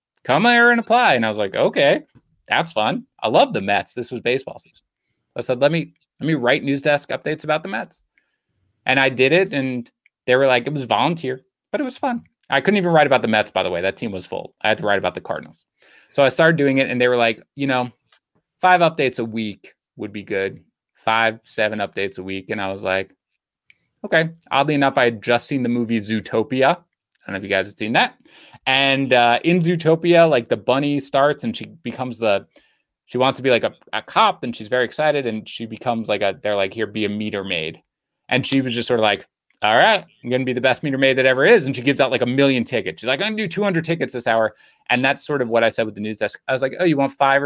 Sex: male